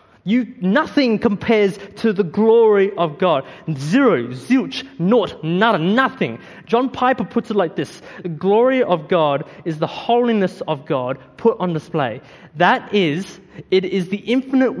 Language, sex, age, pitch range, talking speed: English, male, 20-39, 145-195 Hz, 150 wpm